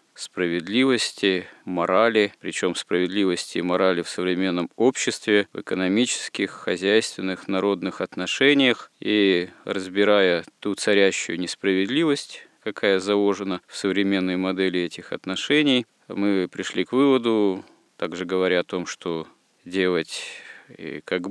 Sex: male